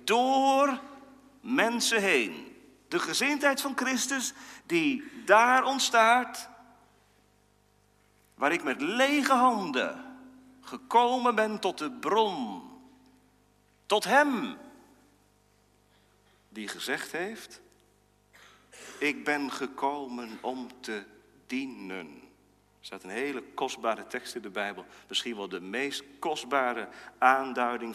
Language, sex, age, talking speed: Dutch, male, 40-59, 100 wpm